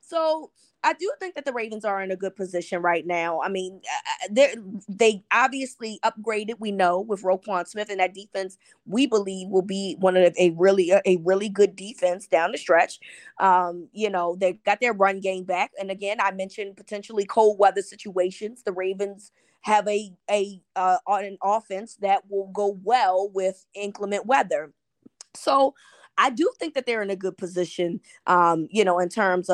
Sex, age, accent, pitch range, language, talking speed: female, 20-39, American, 180-215 Hz, English, 185 wpm